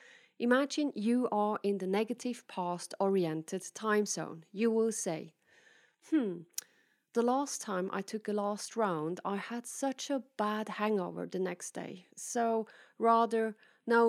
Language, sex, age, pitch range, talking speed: English, female, 30-49, 185-235 Hz, 140 wpm